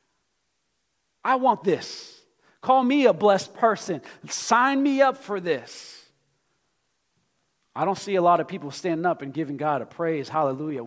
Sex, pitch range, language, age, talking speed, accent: male, 160-215 Hz, English, 40-59, 155 wpm, American